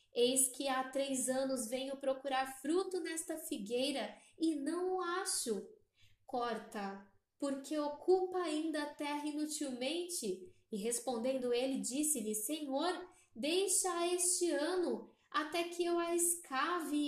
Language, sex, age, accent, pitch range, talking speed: Portuguese, female, 10-29, Brazilian, 225-315 Hz, 120 wpm